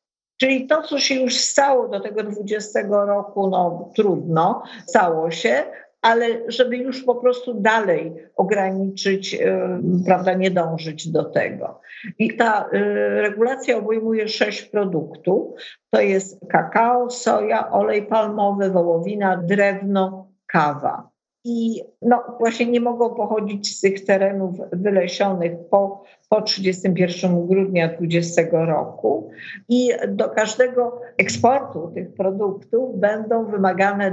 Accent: native